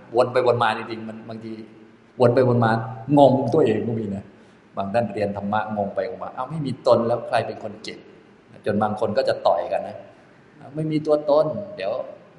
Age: 20-39